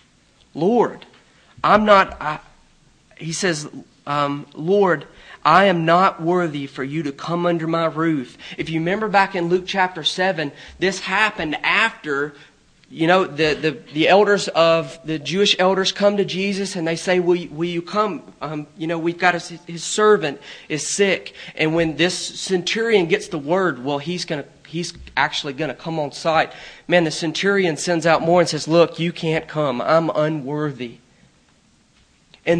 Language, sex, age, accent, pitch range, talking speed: English, male, 40-59, American, 160-200 Hz, 165 wpm